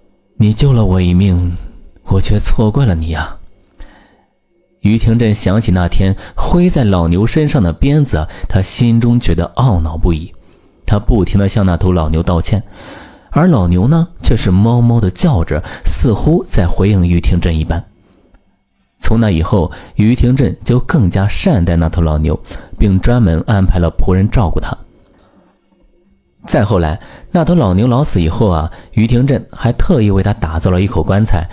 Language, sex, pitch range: Chinese, male, 85-115 Hz